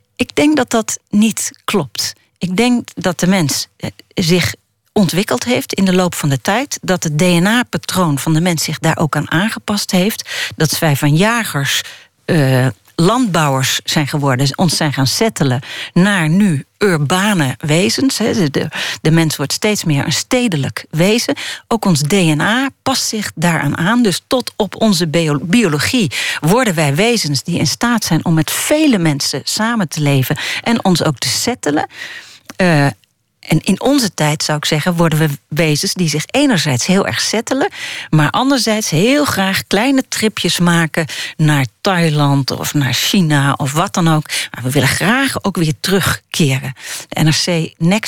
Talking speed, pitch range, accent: 160 wpm, 150-215 Hz, Dutch